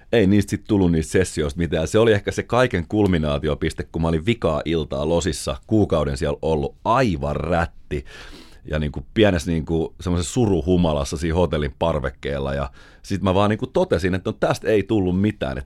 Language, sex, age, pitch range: Finnish, male, 30-49, 75-100 Hz